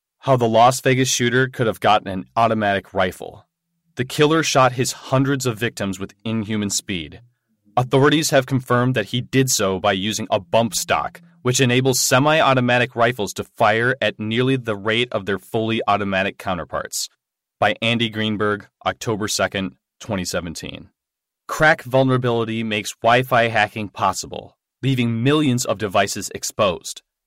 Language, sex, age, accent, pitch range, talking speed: English, male, 30-49, American, 105-135 Hz, 145 wpm